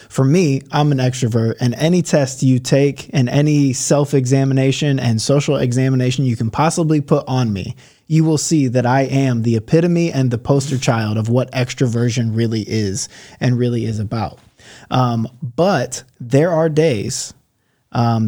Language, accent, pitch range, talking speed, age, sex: English, American, 115-140 Hz, 160 wpm, 20-39, male